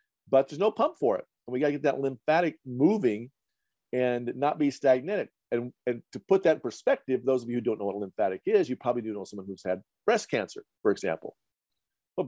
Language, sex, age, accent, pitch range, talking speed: English, male, 50-69, American, 110-150 Hz, 230 wpm